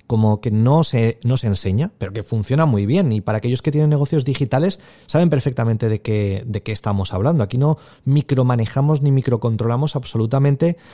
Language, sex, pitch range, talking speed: Spanish, male, 115-160 Hz, 180 wpm